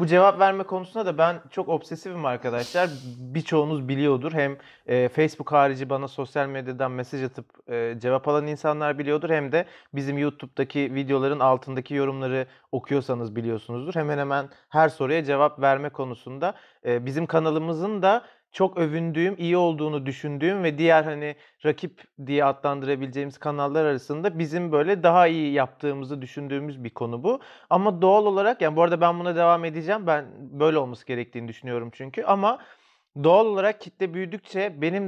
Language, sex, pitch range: Turkish, male, 140-185 Hz